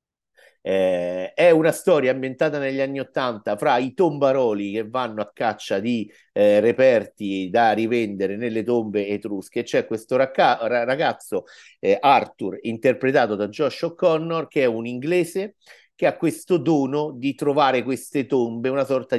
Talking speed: 145 wpm